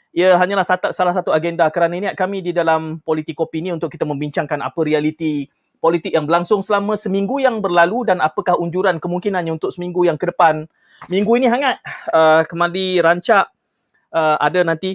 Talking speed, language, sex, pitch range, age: 175 wpm, Malay, male, 155-190 Hz, 30-49